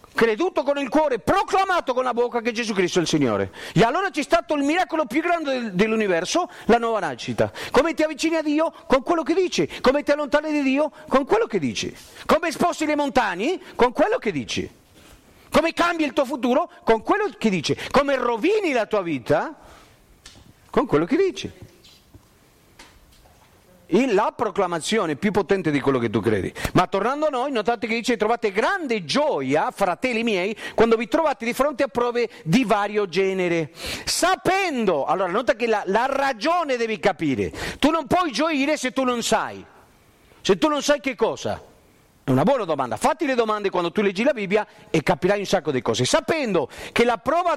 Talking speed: 185 wpm